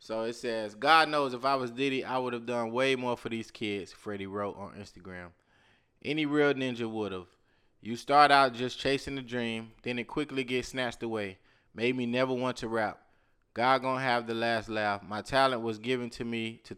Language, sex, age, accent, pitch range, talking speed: English, male, 20-39, American, 105-130 Hz, 210 wpm